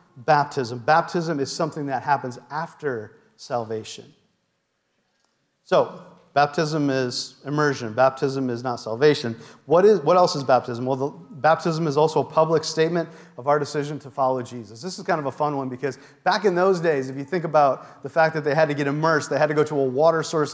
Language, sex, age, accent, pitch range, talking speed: English, male, 40-59, American, 135-165 Hz, 200 wpm